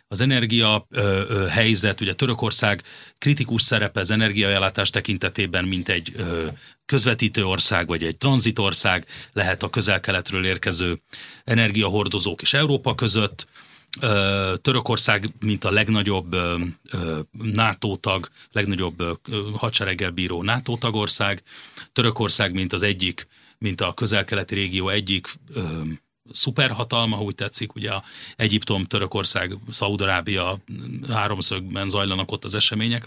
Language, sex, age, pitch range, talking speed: Hungarian, male, 40-59, 95-120 Hz, 115 wpm